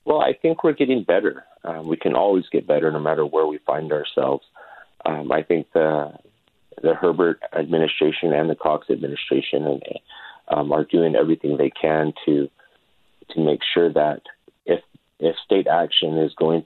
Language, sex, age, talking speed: English, male, 30-49, 170 wpm